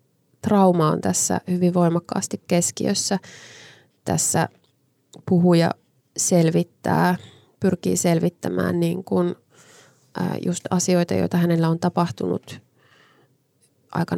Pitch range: 150-180 Hz